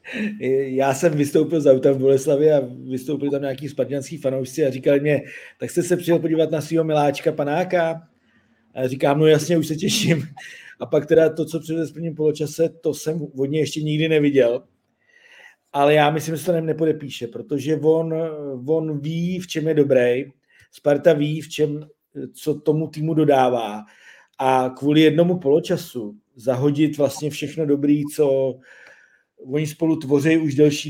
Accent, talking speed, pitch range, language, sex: native, 160 wpm, 145-160 Hz, Czech, male